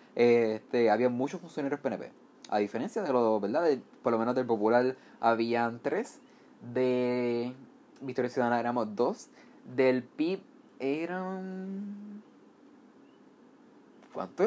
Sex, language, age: male, Spanish, 20-39